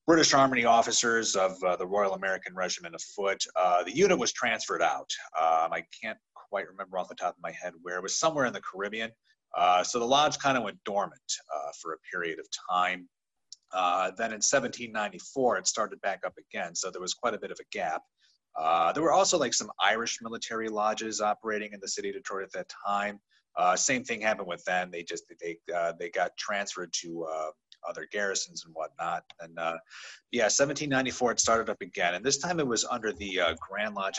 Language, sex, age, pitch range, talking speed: English, male, 30-49, 90-135 Hz, 215 wpm